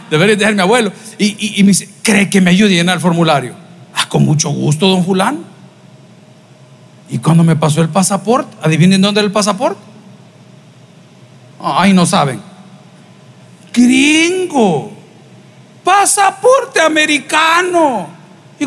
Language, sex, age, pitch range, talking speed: Spanish, male, 50-69, 190-280 Hz, 135 wpm